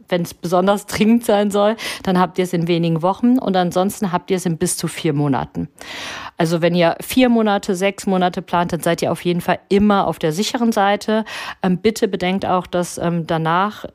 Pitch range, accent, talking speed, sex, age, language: 165-200 Hz, German, 200 wpm, female, 50-69, German